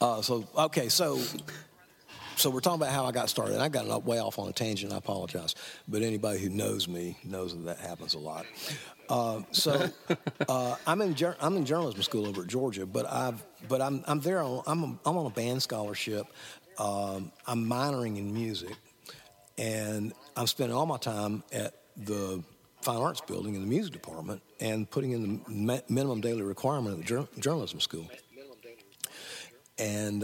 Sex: male